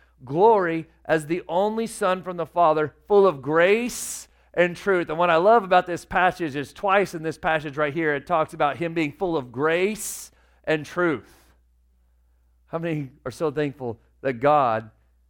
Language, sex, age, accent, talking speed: English, male, 40-59, American, 175 wpm